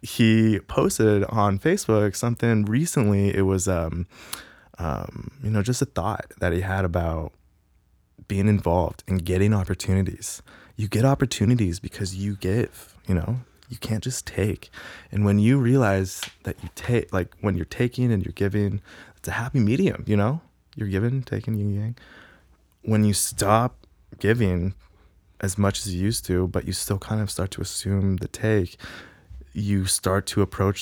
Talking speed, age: 165 wpm, 20-39